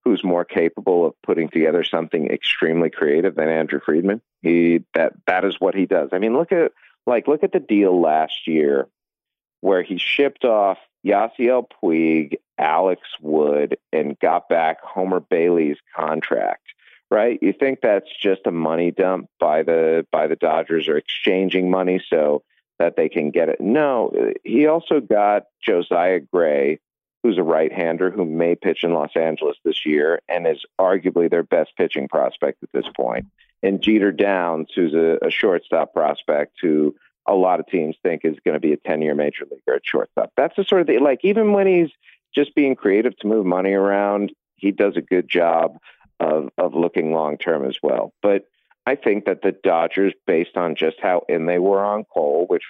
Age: 40-59